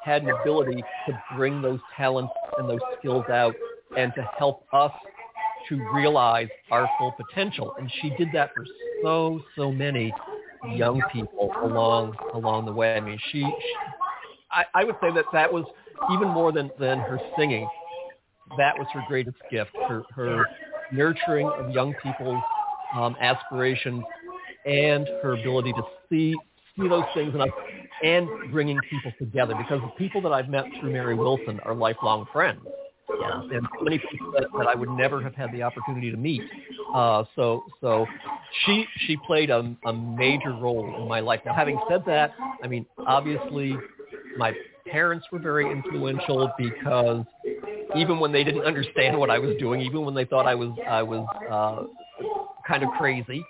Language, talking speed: English, 170 wpm